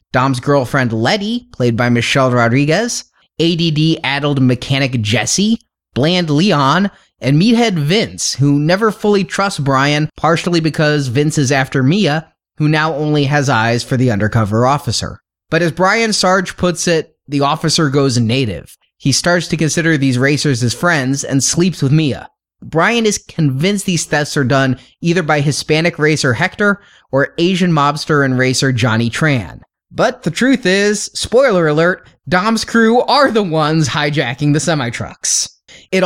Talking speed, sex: 150 wpm, male